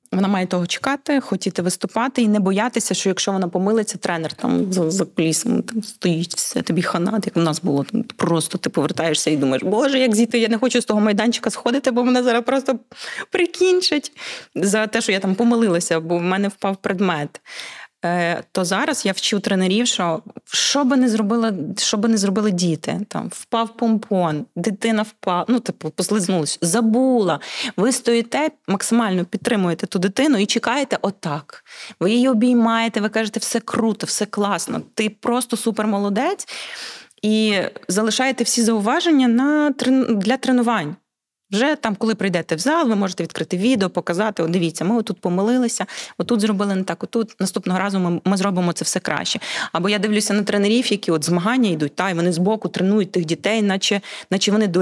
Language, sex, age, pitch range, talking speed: Ukrainian, female, 20-39, 185-235 Hz, 175 wpm